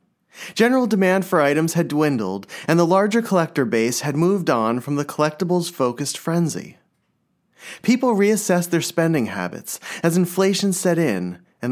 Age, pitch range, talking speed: 30-49, 140-195 Hz, 145 wpm